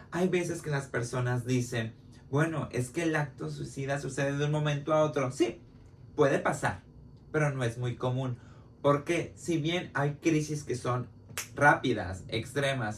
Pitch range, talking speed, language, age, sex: 120-145 Hz, 160 wpm, Spanish, 30-49, male